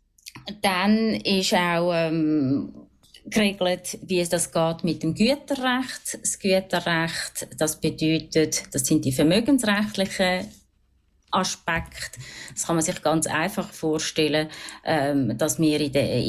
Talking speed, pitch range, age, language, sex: 120 wpm, 160-215 Hz, 30-49, German, female